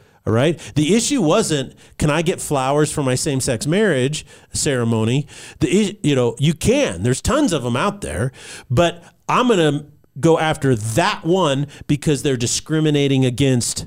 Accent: American